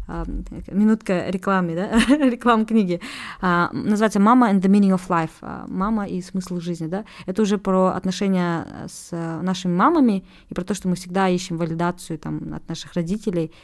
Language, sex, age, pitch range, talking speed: Russian, female, 20-39, 175-215 Hz, 160 wpm